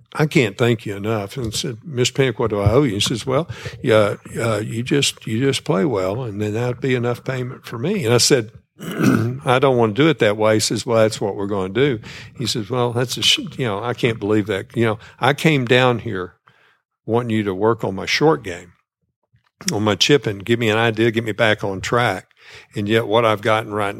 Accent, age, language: American, 60-79, English